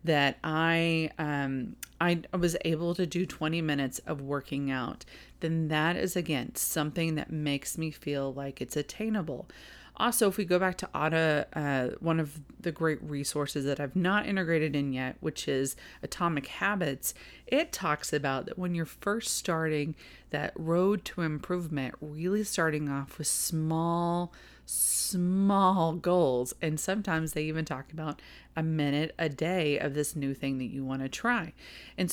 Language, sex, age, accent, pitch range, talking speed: English, female, 30-49, American, 145-180 Hz, 160 wpm